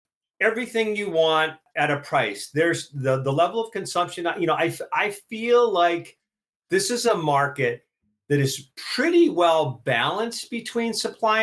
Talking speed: 150 wpm